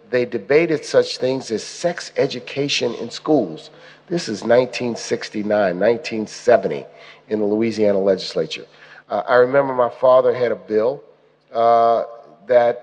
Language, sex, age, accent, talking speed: English, male, 50-69, American, 125 wpm